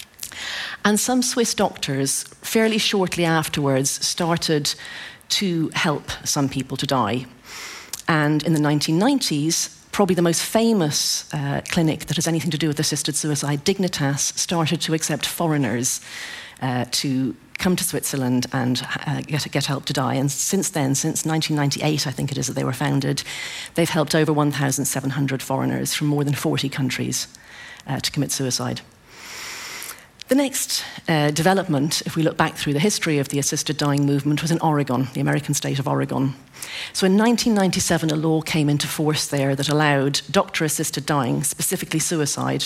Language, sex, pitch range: English, female, 140-165 Hz